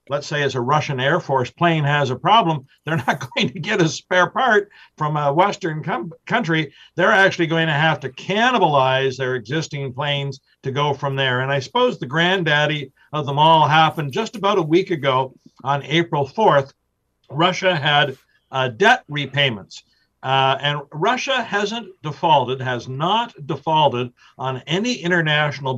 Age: 60-79